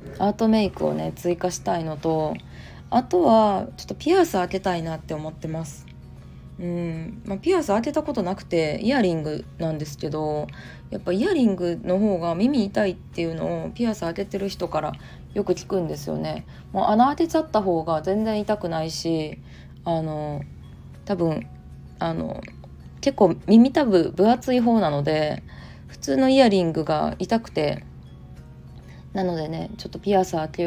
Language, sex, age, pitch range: Japanese, female, 20-39, 155-200 Hz